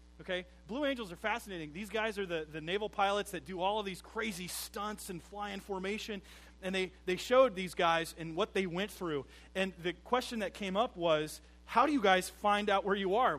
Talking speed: 225 wpm